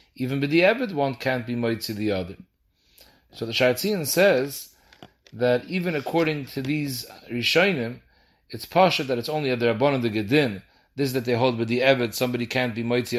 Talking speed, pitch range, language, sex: 190 wpm, 120-150 Hz, English, male